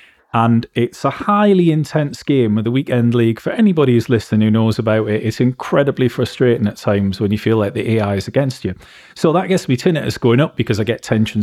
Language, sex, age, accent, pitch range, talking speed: English, male, 30-49, British, 105-130 Hz, 225 wpm